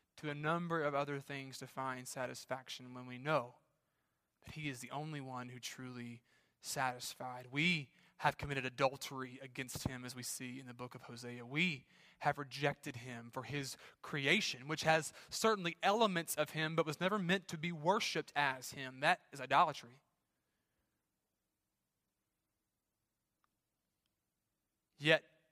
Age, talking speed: 20-39, 145 wpm